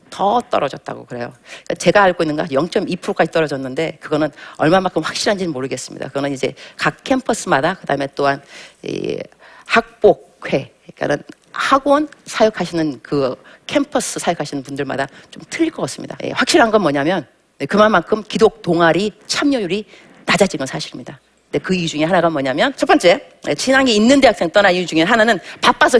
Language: Korean